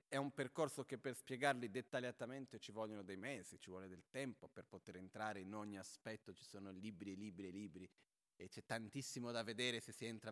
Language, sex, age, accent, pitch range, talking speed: Italian, male, 30-49, native, 100-125 Hz, 210 wpm